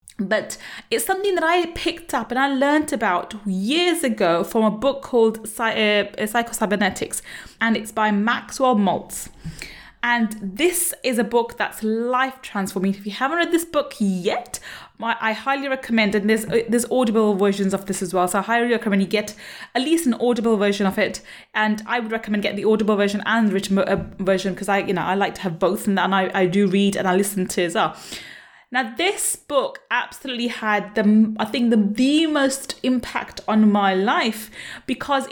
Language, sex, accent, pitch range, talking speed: English, female, British, 200-260 Hz, 195 wpm